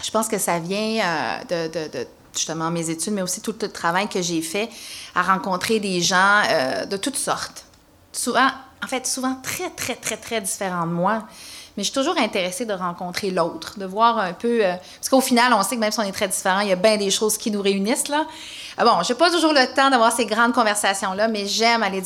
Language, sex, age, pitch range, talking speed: French, female, 30-49, 185-235 Hz, 240 wpm